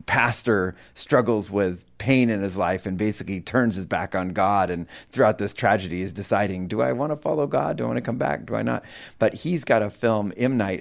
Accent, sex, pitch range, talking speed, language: American, male, 110-150 Hz, 235 wpm, English